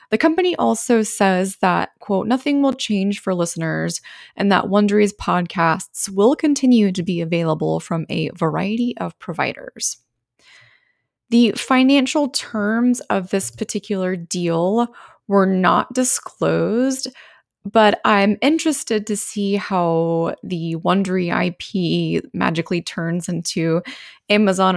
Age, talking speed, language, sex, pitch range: 20-39, 115 wpm, English, female, 170-225 Hz